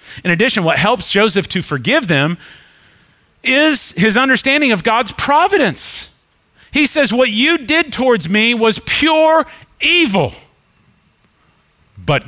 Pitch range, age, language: 120-195 Hz, 40-59, English